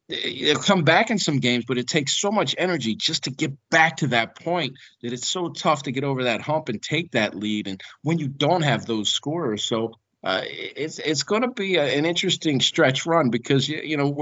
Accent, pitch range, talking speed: American, 110-150 Hz, 230 wpm